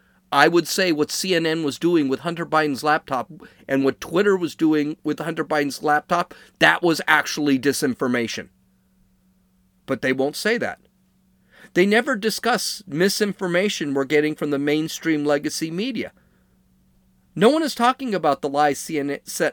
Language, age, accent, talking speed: English, 40-59, American, 145 wpm